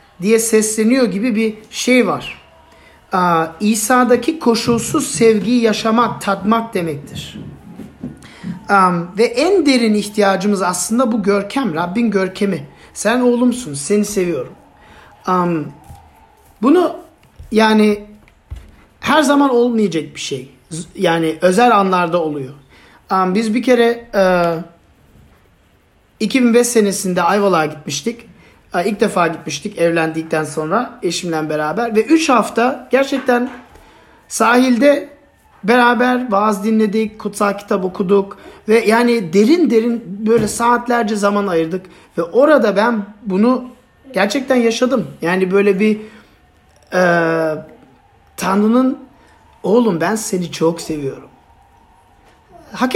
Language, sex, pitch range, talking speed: Turkish, male, 180-240 Hz, 105 wpm